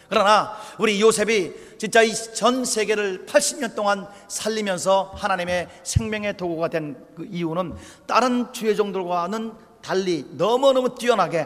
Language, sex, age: Korean, male, 40-59